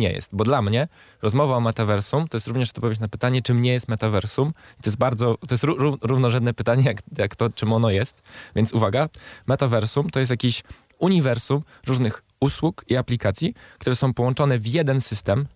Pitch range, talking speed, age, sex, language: 110-135 Hz, 195 wpm, 20-39, male, Polish